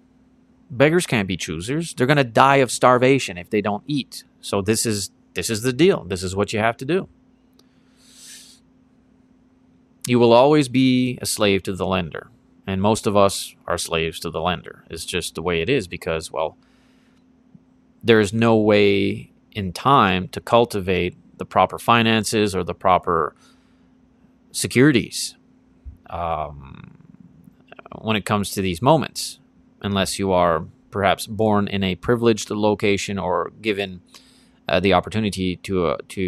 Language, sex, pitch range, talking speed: English, male, 95-140 Hz, 150 wpm